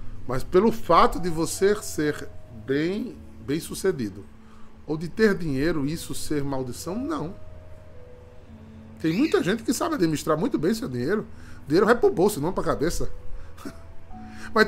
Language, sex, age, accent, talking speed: Portuguese, male, 20-39, Brazilian, 150 wpm